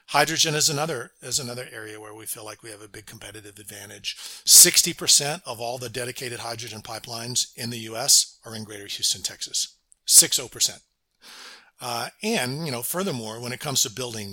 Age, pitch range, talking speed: 50-69, 115-140 Hz, 185 wpm